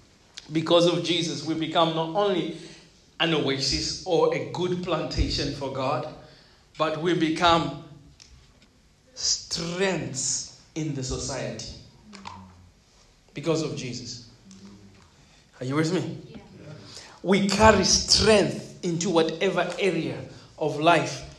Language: English